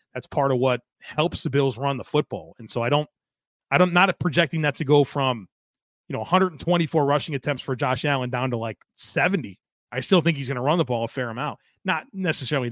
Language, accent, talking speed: English, American, 225 wpm